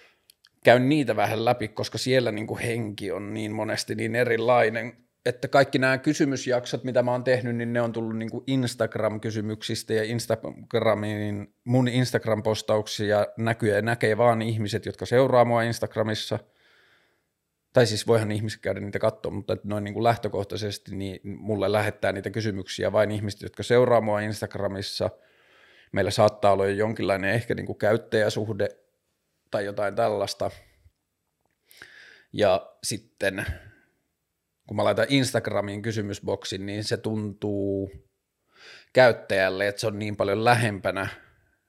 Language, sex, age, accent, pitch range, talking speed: Finnish, male, 30-49, native, 105-115 Hz, 130 wpm